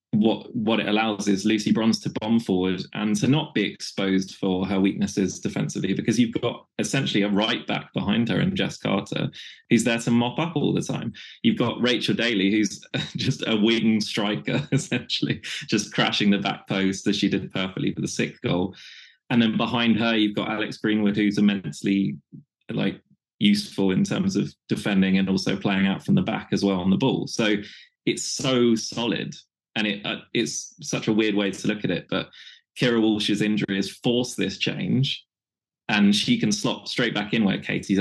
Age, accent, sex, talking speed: 20-39, British, male, 195 wpm